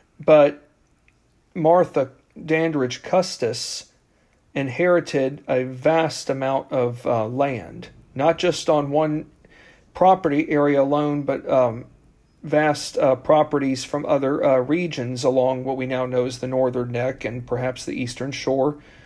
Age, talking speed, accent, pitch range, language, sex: 40-59, 130 wpm, American, 125-150 Hz, English, male